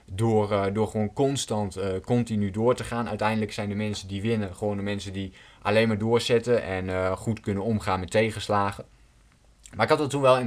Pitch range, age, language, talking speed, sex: 100-120 Hz, 20-39, Dutch, 210 wpm, male